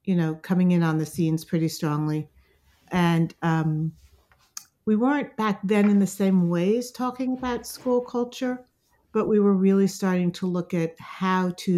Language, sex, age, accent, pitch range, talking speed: English, female, 50-69, American, 160-195 Hz, 170 wpm